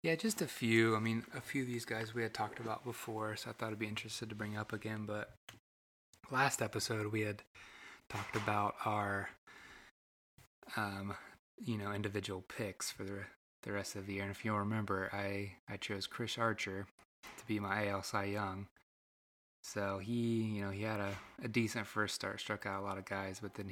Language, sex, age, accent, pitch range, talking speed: English, male, 20-39, American, 100-110 Hz, 205 wpm